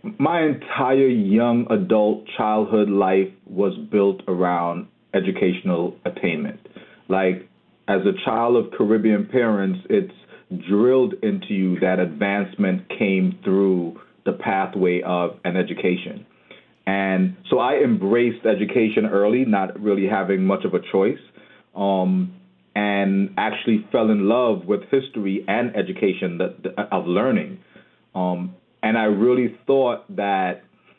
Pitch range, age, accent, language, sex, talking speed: 95-125 Hz, 40-59, American, English, male, 120 wpm